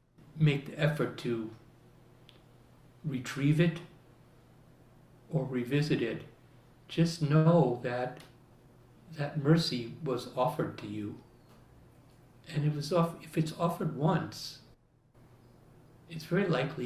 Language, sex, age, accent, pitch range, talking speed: English, male, 60-79, American, 125-160 Hz, 105 wpm